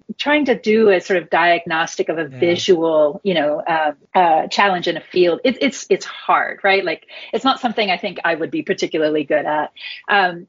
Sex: female